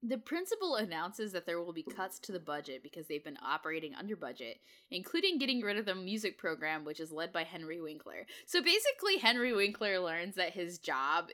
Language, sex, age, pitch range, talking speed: English, female, 10-29, 160-250 Hz, 200 wpm